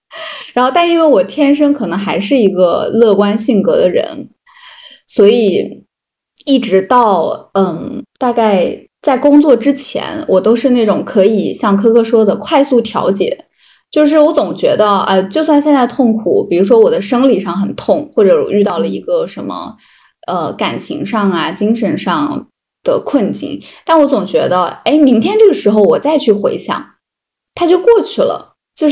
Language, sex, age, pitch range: Chinese, female, 10-29, 200-300 Hz